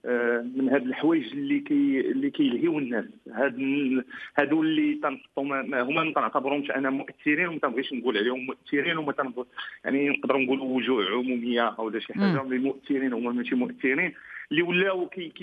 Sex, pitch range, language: male, 150-210 Hz, English